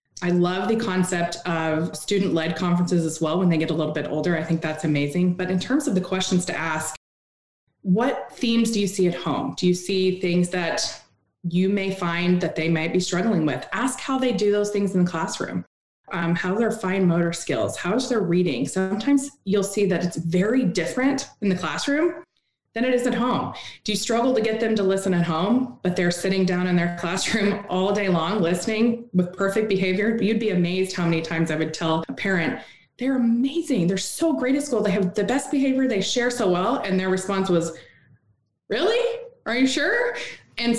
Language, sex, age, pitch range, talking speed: English, female, 20-39, 175-230 Hz, 210 wpm